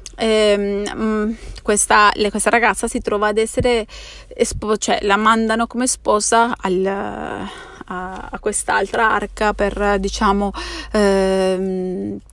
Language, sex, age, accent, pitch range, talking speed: Italian, female, 30-49, native, 210-245 Hz, 100 wpm